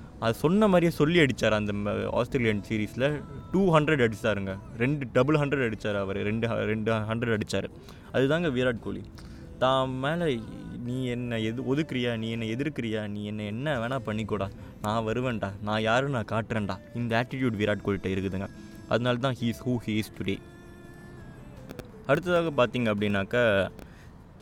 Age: 20-39